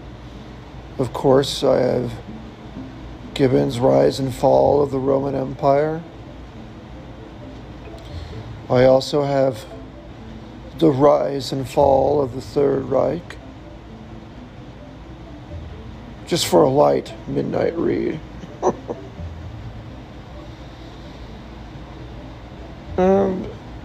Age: 50-69